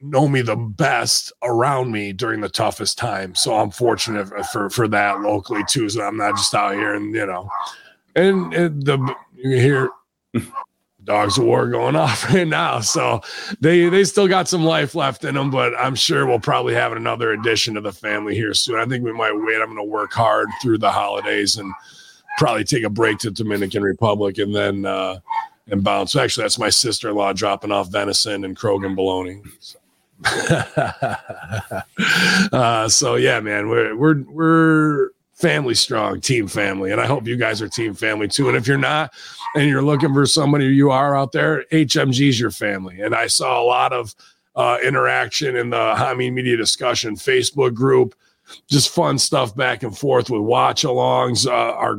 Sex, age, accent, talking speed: male, 30-49, American, 185 wpm